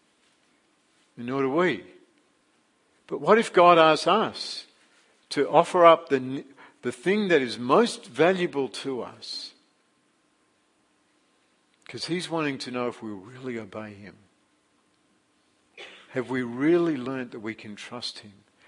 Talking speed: 130 wpm